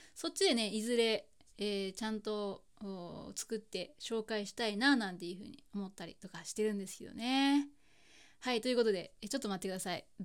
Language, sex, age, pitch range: Japanese, female, 20-39, 200-250 Hz